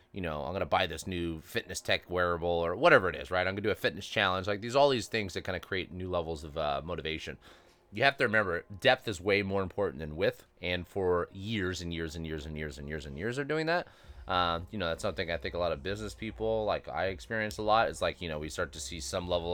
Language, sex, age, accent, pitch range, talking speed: English, male, 20-39, American, 85-125 Hz, 275 wpm